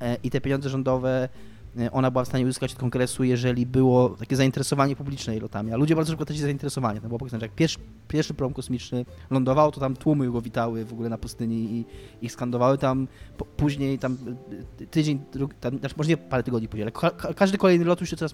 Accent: native